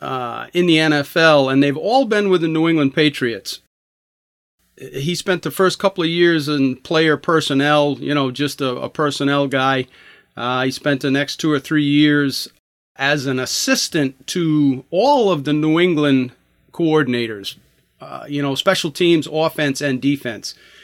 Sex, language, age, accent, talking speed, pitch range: male, English, 40-59, American, 165 wpm, 135-170 Hz